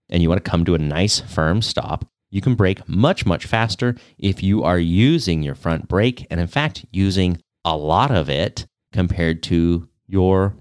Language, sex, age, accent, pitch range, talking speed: English, male, 30-49, American, 85-115 Hz, 190 wpm